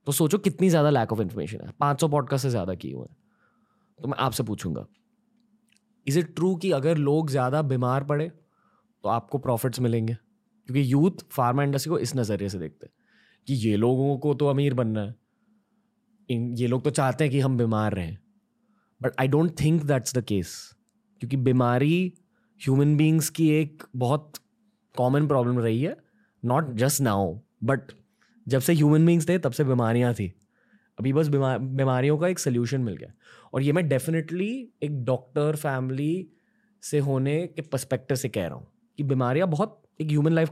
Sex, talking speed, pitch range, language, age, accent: male, 180 wpm, 130-170 Hz, Hindi, 20-39, native